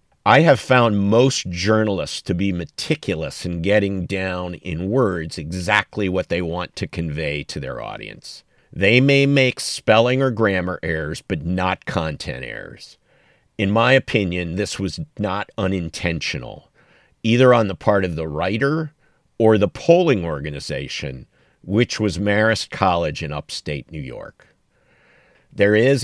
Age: 50-69